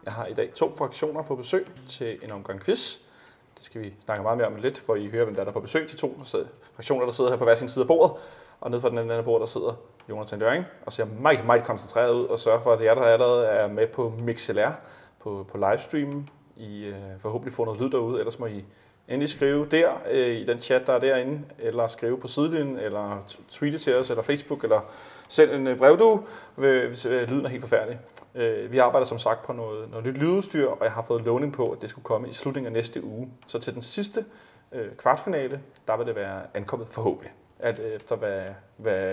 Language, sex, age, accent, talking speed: Danish, male, 30-49, native, 230 wpm